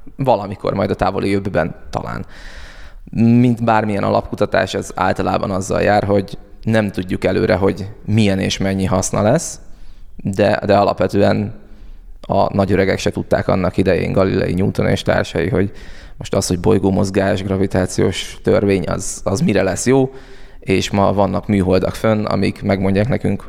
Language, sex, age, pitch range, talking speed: Hungarian, male, 20-39, 95-110 Hz, 145 wpm